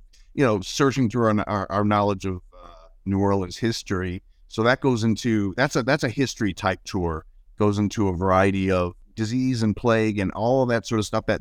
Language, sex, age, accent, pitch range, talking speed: English, male, 50-69, American, 100-130 Hz, 210 wpm